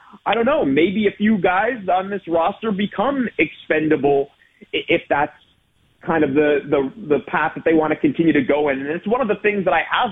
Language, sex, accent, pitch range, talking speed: English, male, American, 140-175 Hz, 215 wpm